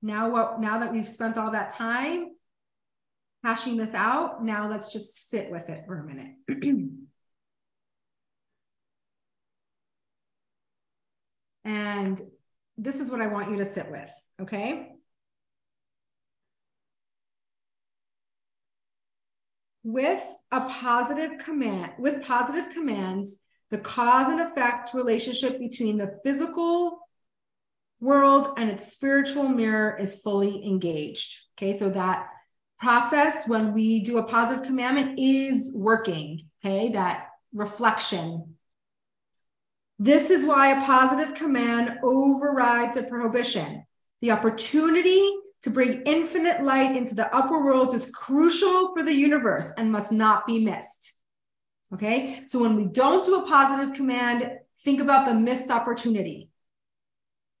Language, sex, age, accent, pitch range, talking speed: English, female, 40-59, American, 215-275 Hz, 120 wpm